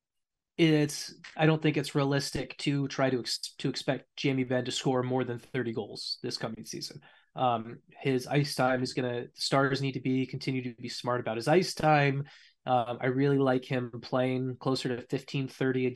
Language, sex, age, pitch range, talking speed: English, male, 20-39, 130-160 Hz, 195 wpm